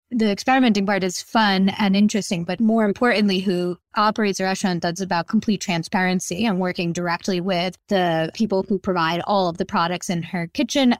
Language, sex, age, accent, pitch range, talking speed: English, female, 20-39, American, 180-210 Hz, 180 wpm